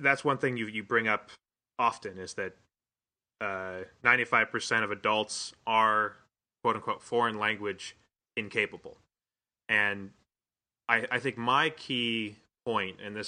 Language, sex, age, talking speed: English, male, 20-39, 120 wpm